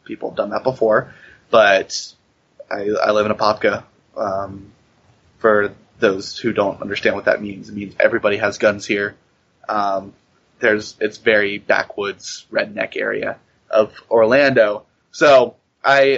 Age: 20-39